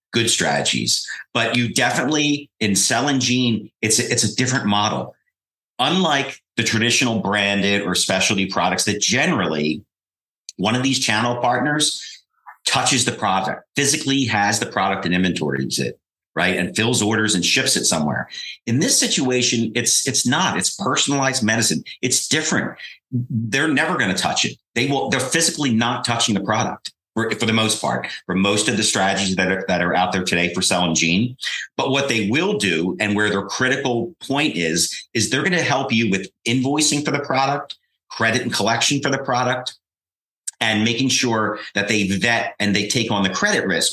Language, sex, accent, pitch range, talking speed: English, male, American, 100-125 Hz, 180 wpm